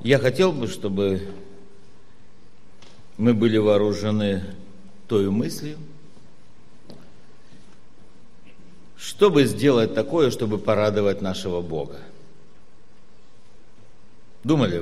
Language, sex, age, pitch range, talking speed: Russian, male, 60-79, 95-110 Hz, 70 wpm